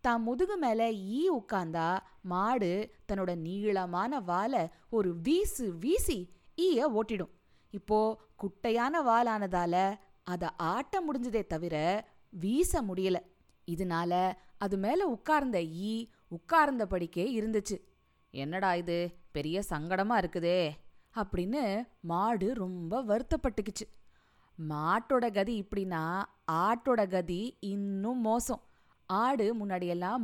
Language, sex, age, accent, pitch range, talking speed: Tamil, female, 20-39, native, 180-240 Hz, 95 wpm